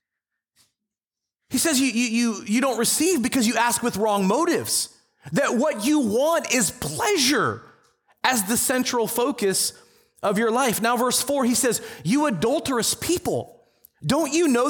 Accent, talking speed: American, 155 wpm